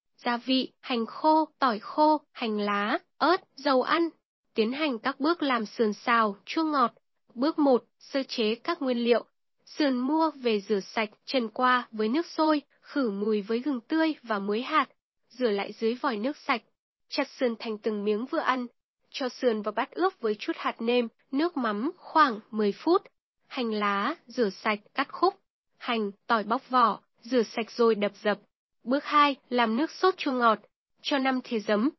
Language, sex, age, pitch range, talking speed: Vietnamese, female, 10-29, 225-290 Hz, 185 wpm